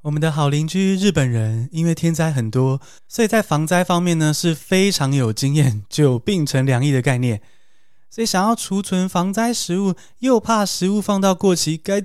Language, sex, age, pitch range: Chinese, male, 20-39, 135-180 Hz